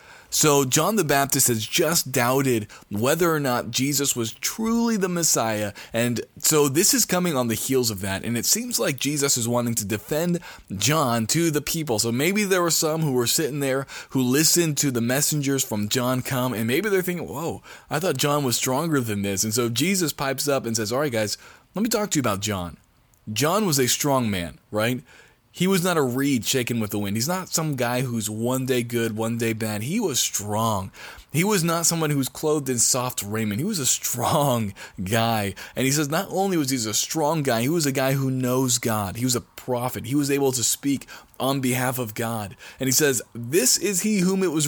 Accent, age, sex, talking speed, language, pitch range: American, 20-39, male, 225 wpm, English, 115-150 Hz